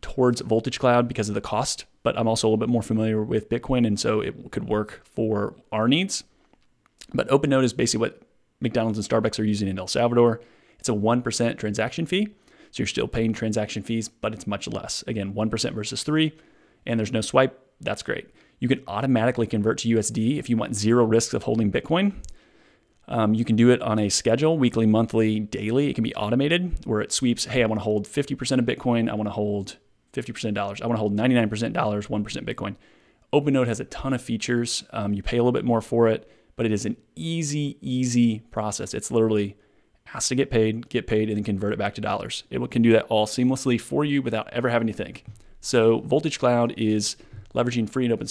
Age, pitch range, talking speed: 30-49, 110-125 Hz, 215 wpm